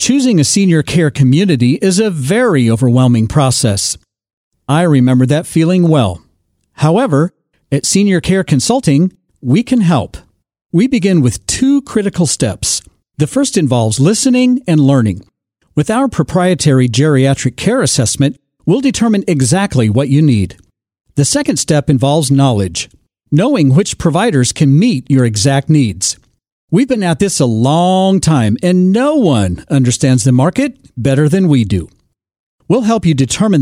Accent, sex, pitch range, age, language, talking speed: American, male, 125-190 Hz, 50-69, English, 145 wpm